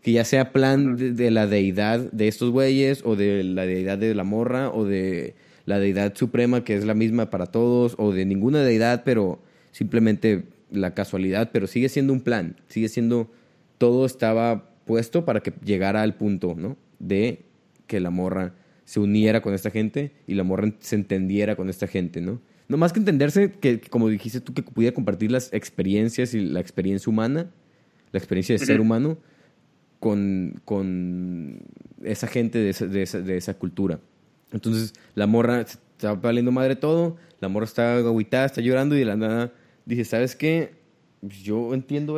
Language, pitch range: Spanish, 105-125 Hz